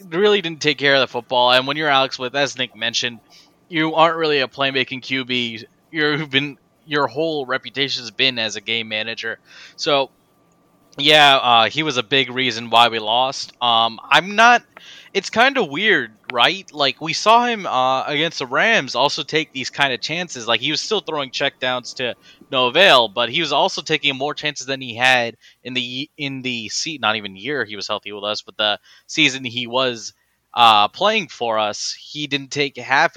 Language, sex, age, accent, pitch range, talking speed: English, male, 20-39, American, 115-145 Hz, 200 wpm